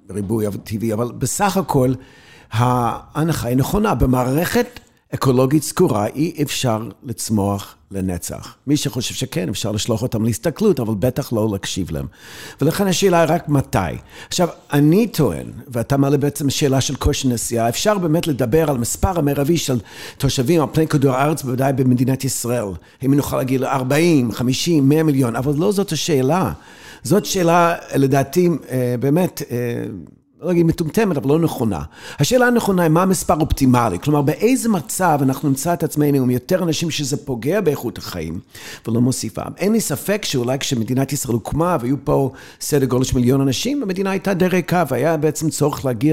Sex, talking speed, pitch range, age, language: male, 160 wpm, 120-160 Hz, 50-69, Hebrew